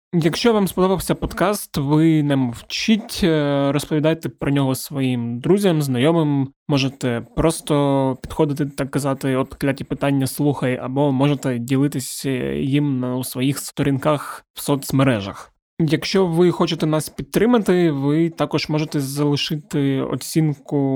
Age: 20-39